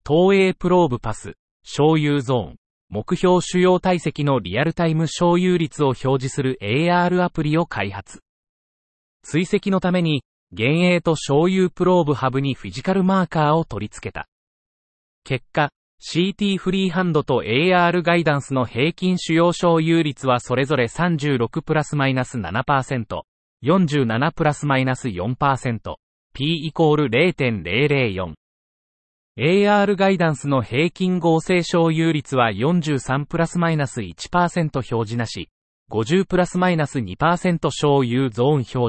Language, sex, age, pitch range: Japanese, male, 30-49, 125-170 Hz